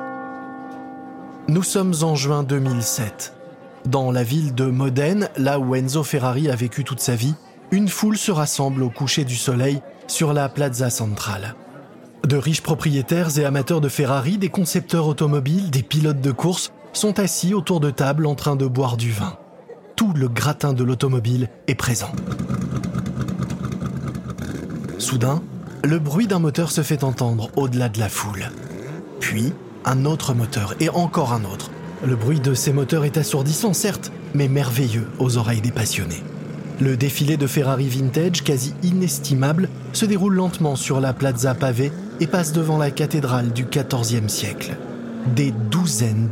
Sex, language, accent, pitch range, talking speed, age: male, French, French, 125-165 Hz, 155 wpm, 20-39